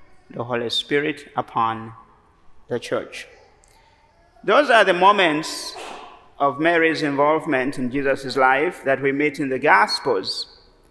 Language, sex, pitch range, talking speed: English, male, 135-185 Hz, 120 wpm